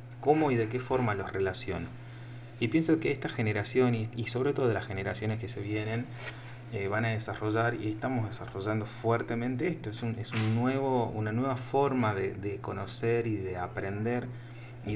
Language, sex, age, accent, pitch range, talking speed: Spanish, male, 30-49, Argentinian, 110-125 Hz, 165 wpm